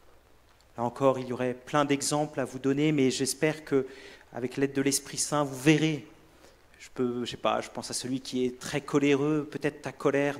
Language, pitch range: French, 115-145 Hz